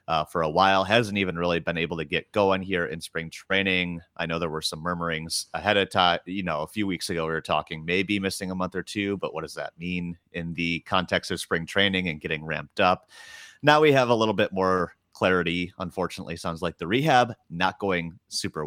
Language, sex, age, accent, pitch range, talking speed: English, male, 30-49, American, 85-105 Hz, 230 wpm